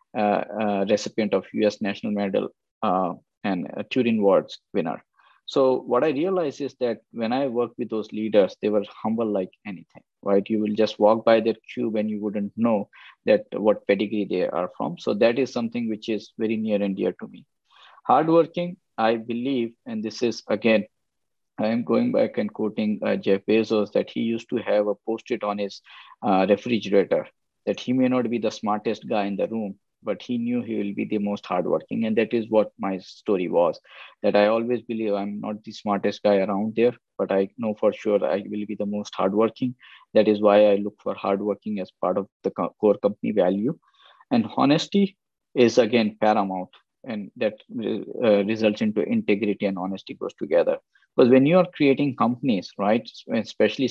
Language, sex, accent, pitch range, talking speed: English, male, Indian, 105-120 Hz, 195 wpm